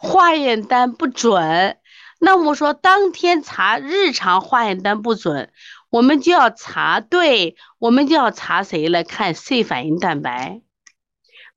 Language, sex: Chinese, female